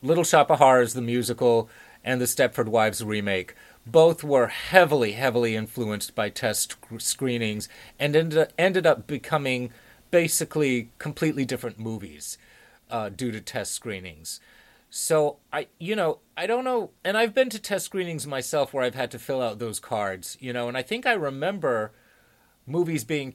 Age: 30-49